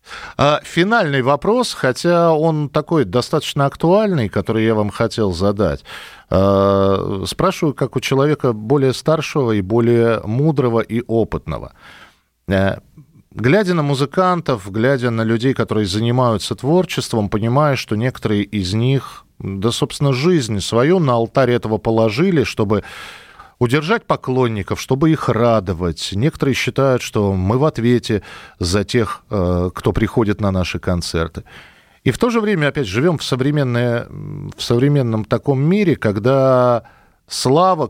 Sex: male